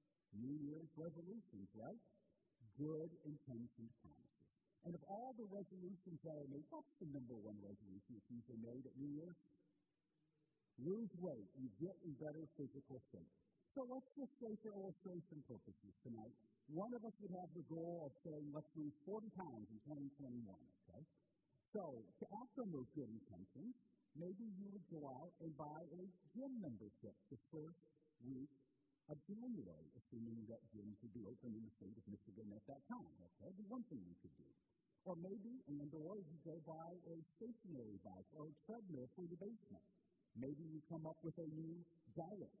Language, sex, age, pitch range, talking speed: English, male, 50-69, 135-185 Hz, 175 wpm